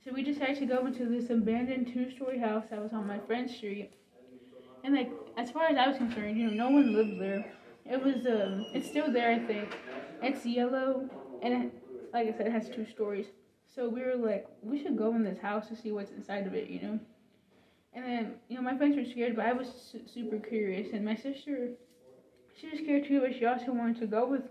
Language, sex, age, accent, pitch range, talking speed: English, female, 10-29, American, 220-255 Hz, 230 wpm